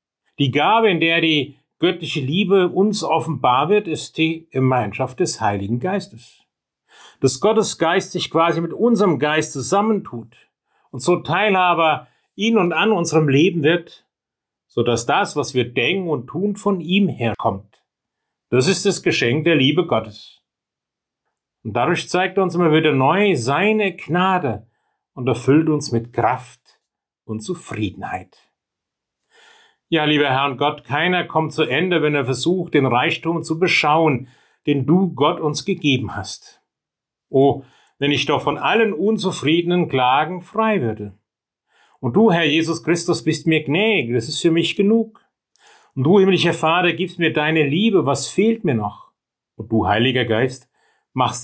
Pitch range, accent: 130-180 Hz, German